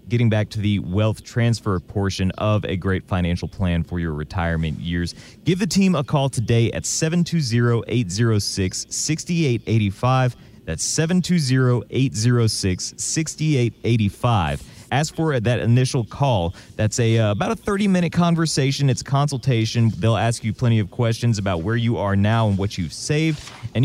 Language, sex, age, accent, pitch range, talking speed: English, male, 30-49, American, 105-135 Hz, 145 wpm